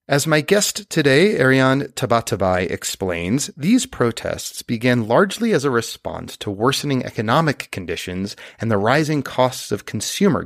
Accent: American